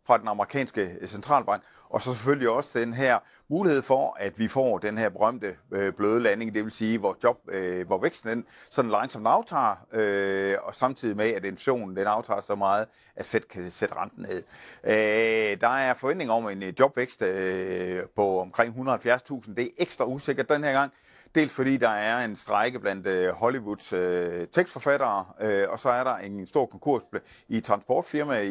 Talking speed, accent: 170 wpm, native